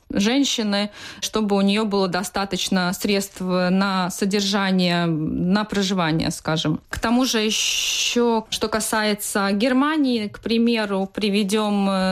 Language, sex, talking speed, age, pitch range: Russian, female, 110 wpm, 20-39, 180-215 Hz